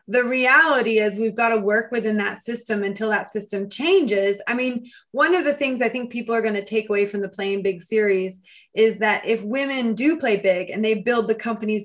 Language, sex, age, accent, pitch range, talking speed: English, female, 20-39, American, 205-245 Hz, 230 wpm